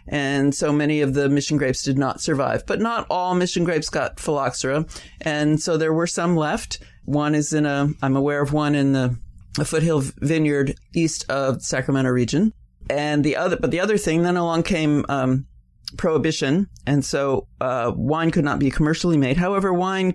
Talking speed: 190 wpm